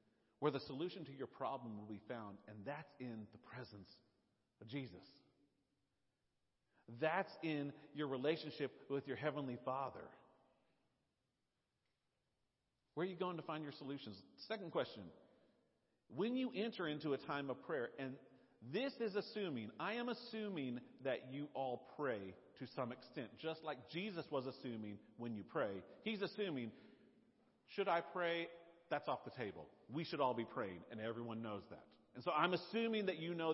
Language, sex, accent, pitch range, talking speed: English, male, American, 125-180 Hz, 160 wpm